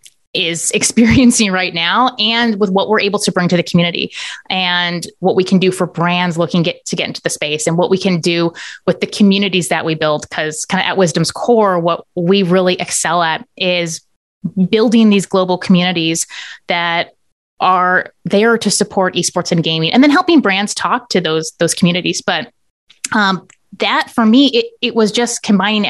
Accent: American